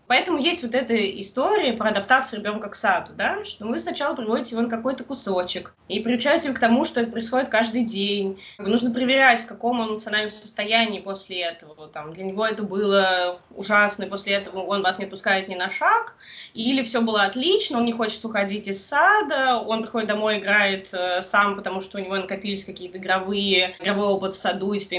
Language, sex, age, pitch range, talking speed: Russian, female, 20-39, 190-230 Hz, 200 wpm